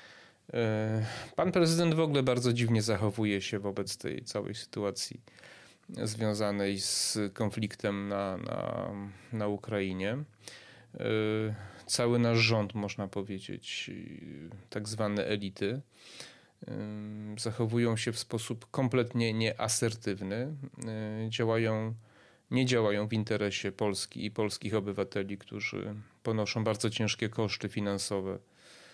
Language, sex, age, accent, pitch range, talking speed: Polish, male, 30-49, native, 100-115 Hz, 95 wpm